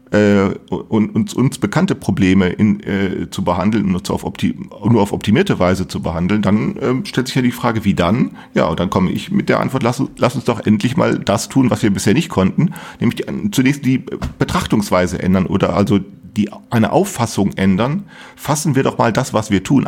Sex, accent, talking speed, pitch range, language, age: male, German, 210 wpm, 95-115 Hz, German, 40-59